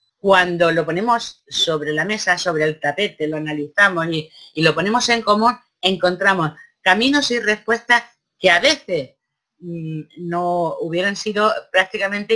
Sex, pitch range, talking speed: female, 175-225 Hz, 140 wpm